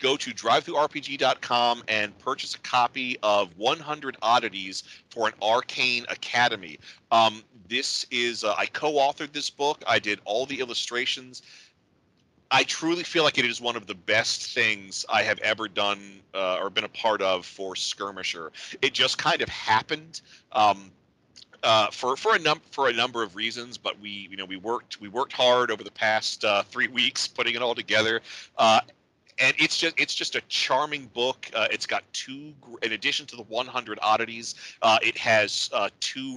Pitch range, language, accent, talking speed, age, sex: 105-130 Hz, English, American, 180 wpm, 40-59, male